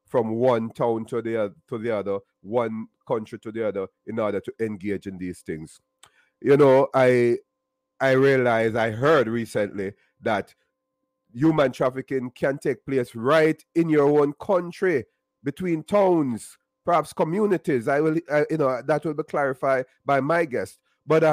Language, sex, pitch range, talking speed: English, male, 125-195 Hz, 160 wpm